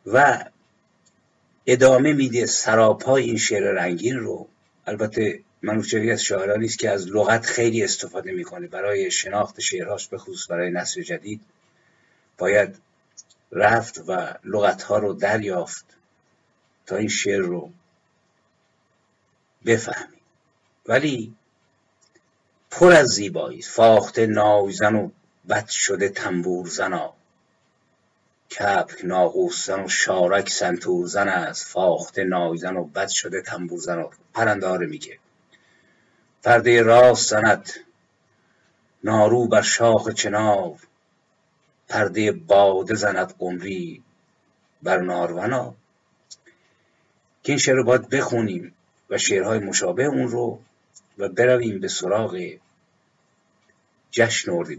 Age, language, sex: 50-69, Persian, male